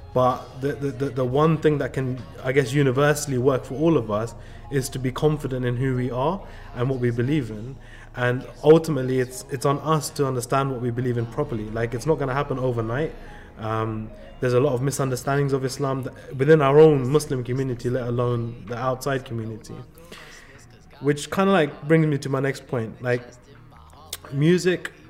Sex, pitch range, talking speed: male, 120-145 Hz, 190 wpm